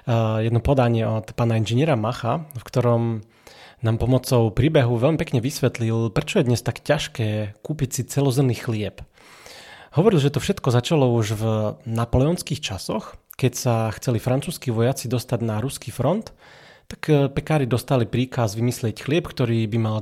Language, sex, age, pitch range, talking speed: Slovak, male, 30-49, 115-135 Hz, 150 wpm